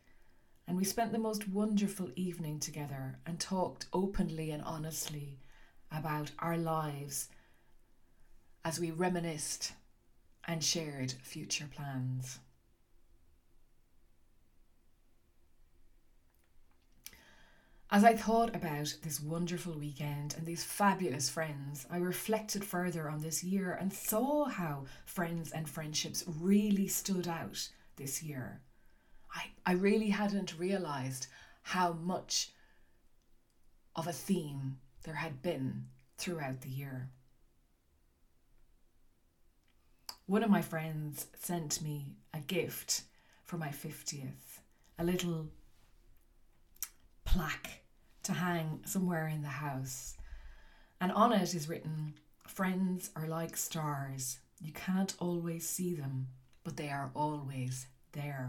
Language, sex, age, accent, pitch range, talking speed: English, female, 30-49, Irish, 130-175 Hz, 110 wpm